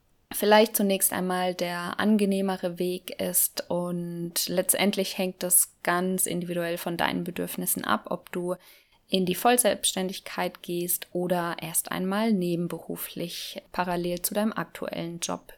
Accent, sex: German, female